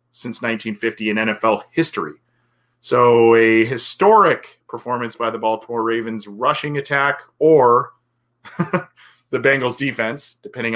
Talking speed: 110 wpm